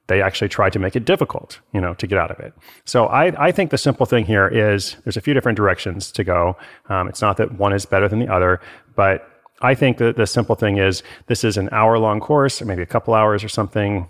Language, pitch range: English, 95-120 Hz